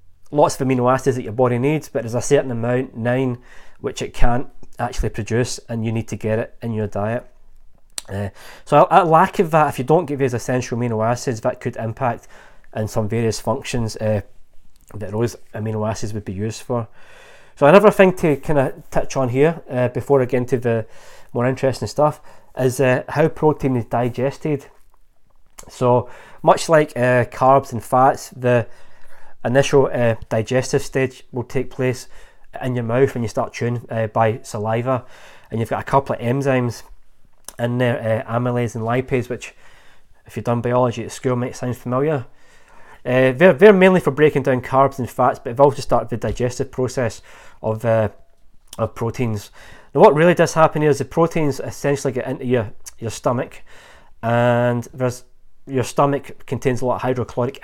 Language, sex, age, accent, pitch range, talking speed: English, male, 20-39, British, 115-135 Hz, 180 wpm